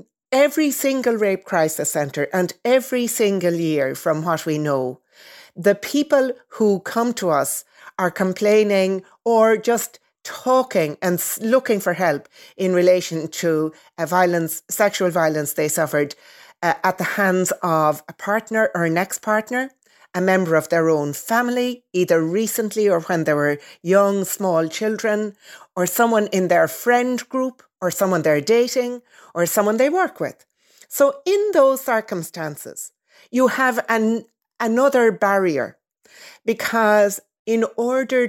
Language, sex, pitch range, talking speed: English, female, 160-225 Hz, 140 wpm